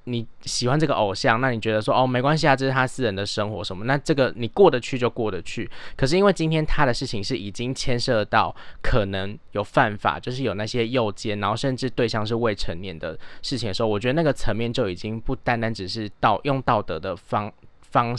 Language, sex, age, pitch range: Chinese, male, 20-39, 100-135 Hz